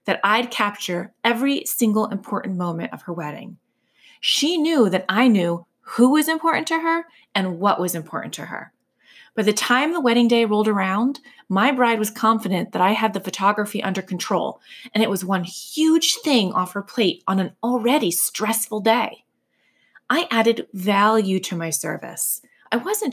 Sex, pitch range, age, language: female, 195-250 Hz, 30-49, English